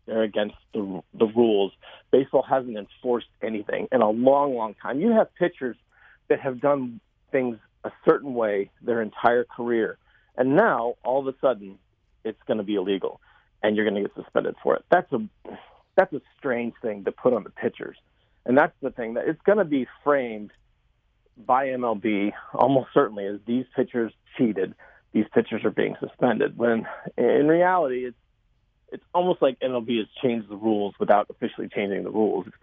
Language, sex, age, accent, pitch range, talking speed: English, male, 40-59, American, 110-145 Hz, 180 wpm